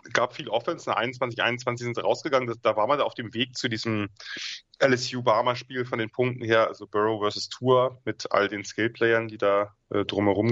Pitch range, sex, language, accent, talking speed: 110-125 Hz, male, German, German, 210 wpm